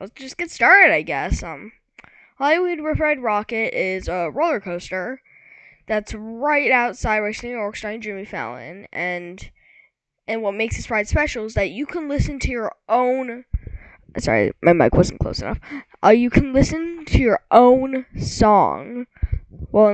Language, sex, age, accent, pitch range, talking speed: English, female, 10-29, American, 210-255 Hz, 160 wpm